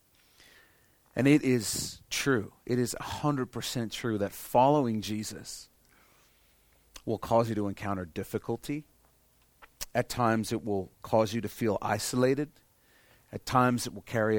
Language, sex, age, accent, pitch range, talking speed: English, male, 40-59, American, 105-125 Hz, 130 wpm